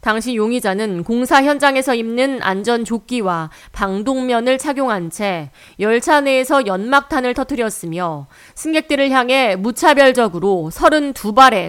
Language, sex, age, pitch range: Korean, female, 40-59, 195-275 Hz